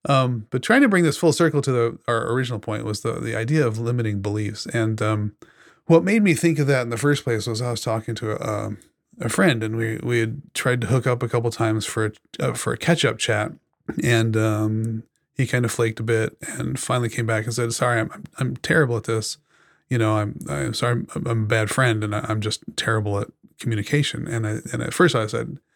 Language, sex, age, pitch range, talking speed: English, male, 30-49, 110-130 Hz, 240 wpm